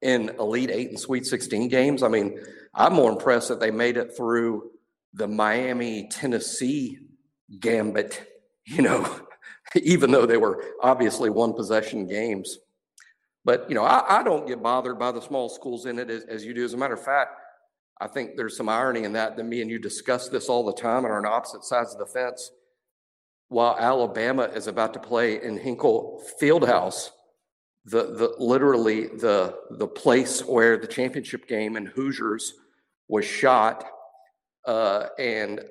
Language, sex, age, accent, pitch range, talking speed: English, male, 50-69, American, 110-135 Hz, 170 wpm